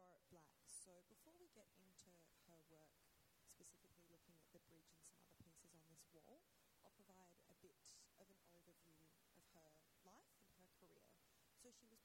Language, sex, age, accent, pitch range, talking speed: English, female, 20-39, Australian, 165-195 Hz, 175 wpm